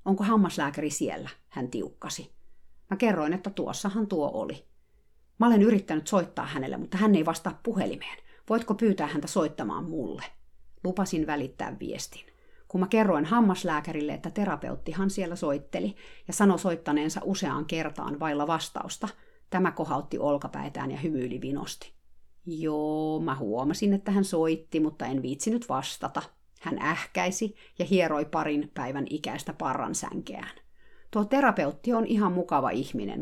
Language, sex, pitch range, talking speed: Finnish, female, 155-220 Hz, 135 wpm